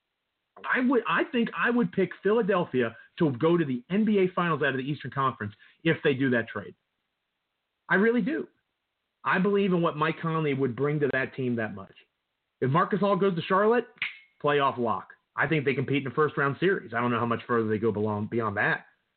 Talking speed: 210 wpm